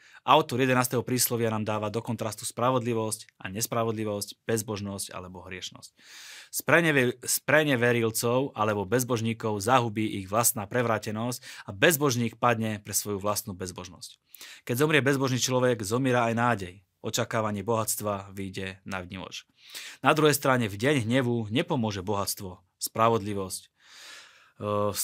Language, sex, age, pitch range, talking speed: Slovak, male, 30-49, 100-125 Hz, 120 wpm